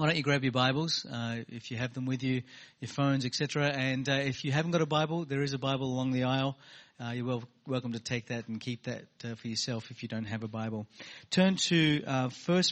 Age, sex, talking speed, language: 40-59, male, 250 wpm, English